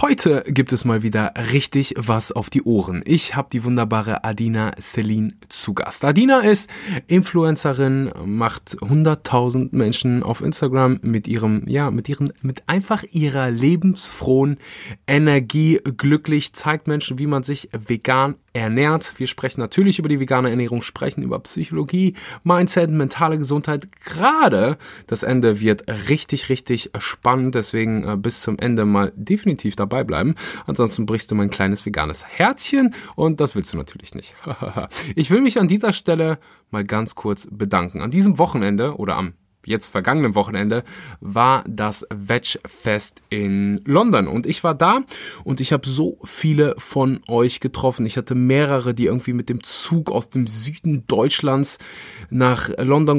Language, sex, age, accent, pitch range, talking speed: German, male, 20-39, German, 110-145 Hz, 150 wpm